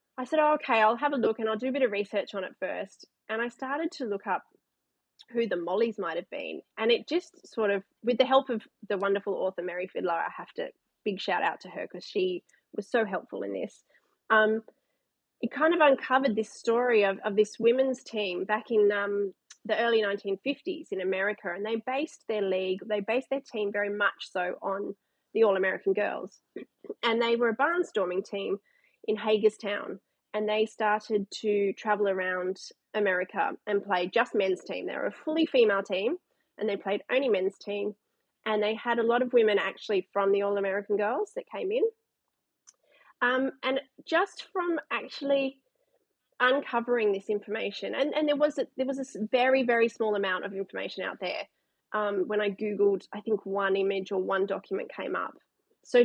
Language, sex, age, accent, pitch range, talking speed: English, female, 30-49, Australian, 200-265 Hz, 195 wpm